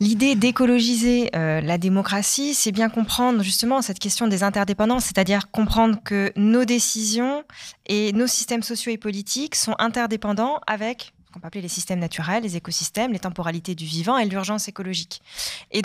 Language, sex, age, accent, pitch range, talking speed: French, female, 20-39, French, 190-240 Hz, 165 wpm